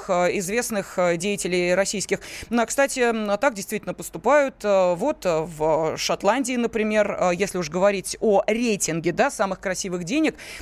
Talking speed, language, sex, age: 115 wpm, Russian, female, 20-39